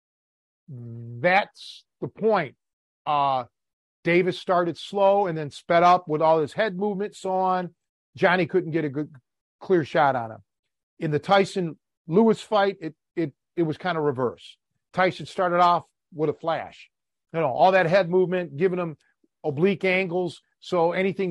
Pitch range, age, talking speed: 150-190 Hz, 50-69, 160 wpm